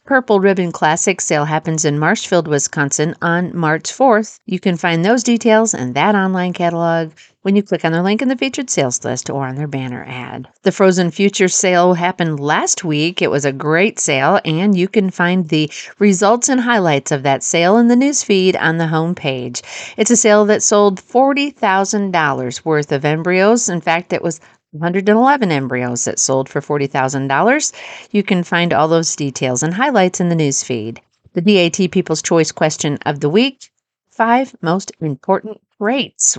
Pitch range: 150-215 Hz